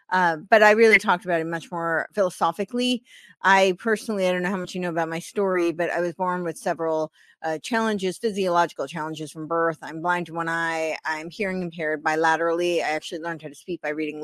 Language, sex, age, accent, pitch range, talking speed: English, female, 30-49, American, 165-195 Hz, 215 wpm